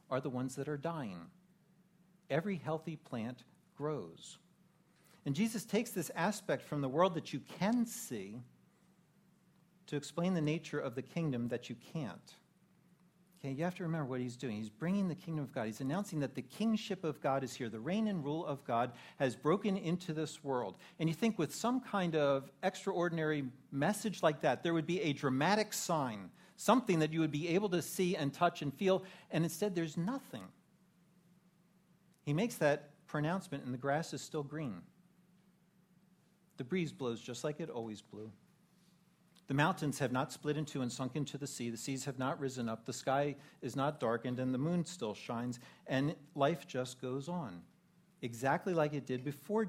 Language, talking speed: English, 185 wpm